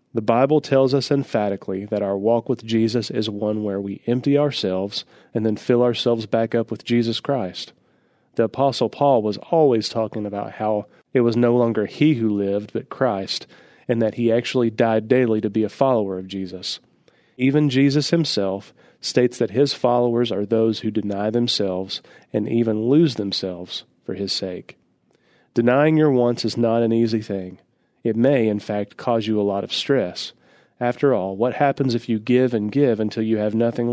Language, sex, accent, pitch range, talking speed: English, male, American, 105-130 Hz, 185 wpm